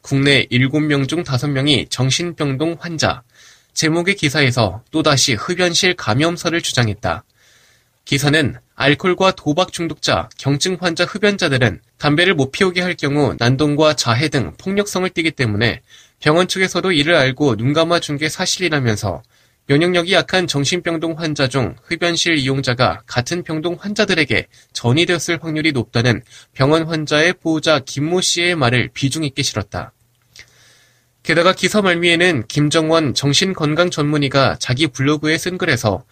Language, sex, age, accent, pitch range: Korean, male, 20-39, native, 125-175 Hz